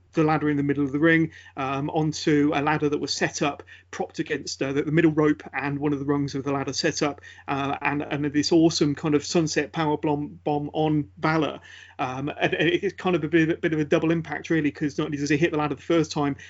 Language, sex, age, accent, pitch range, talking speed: English, male, 40-59, British, 145-165 Hz, 245 wpm